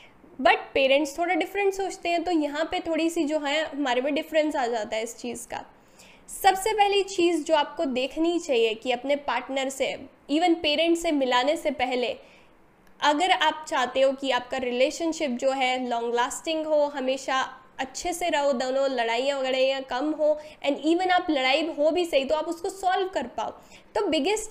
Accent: native